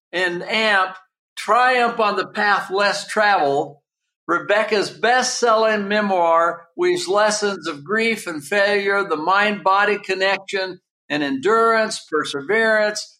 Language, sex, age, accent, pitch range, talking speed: English, male, 60-79, American, 185-230 Hz, 115 wpm